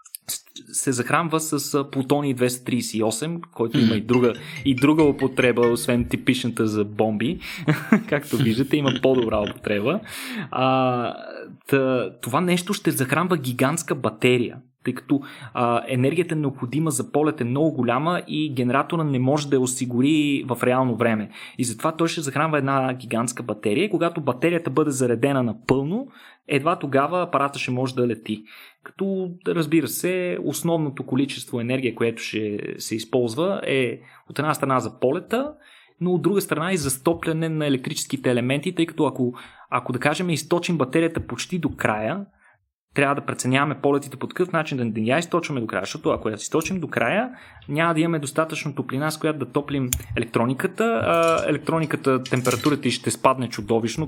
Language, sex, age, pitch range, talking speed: Bulgarian, male, 20-39, 120-155 Hz, 155 wpm